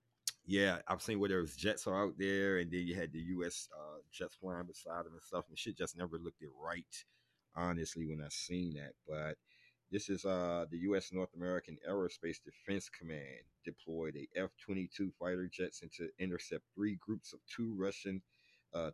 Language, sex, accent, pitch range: English, male, American, 85-100 Hz